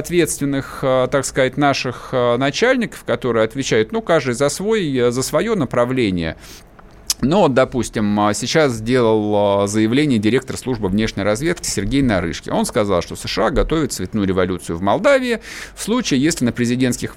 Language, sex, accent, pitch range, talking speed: Russian, male, native, 105-145 Hz, 135 wpm